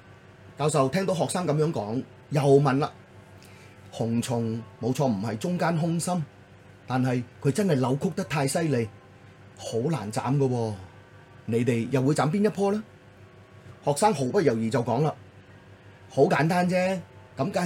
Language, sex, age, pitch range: Chinese, male, 30-49, 100-140 Hz